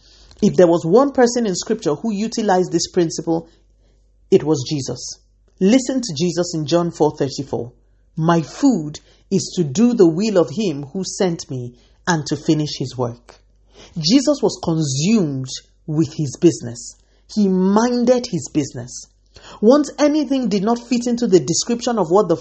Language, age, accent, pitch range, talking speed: English, 40-59, Nigerian, 145-210 Hz, 155 wpm